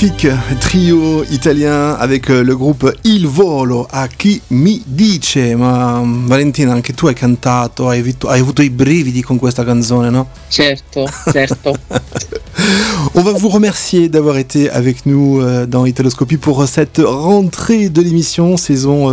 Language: French